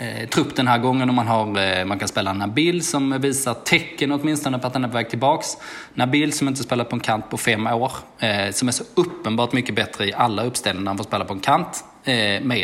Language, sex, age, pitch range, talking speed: Swedish, male, 20-39, 105-130 Hz, 250 wpm